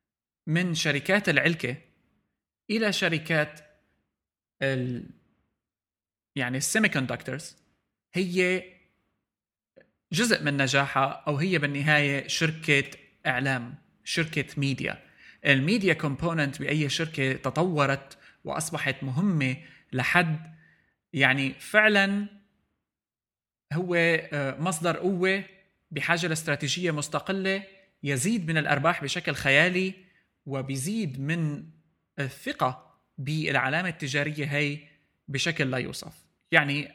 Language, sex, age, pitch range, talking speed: Arabic, male, 20-39, 140-175 Hz, 85 wpm